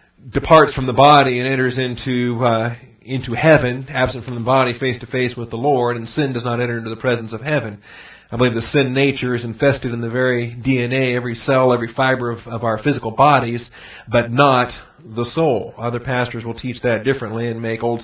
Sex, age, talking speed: male, 40-59, 210 wpm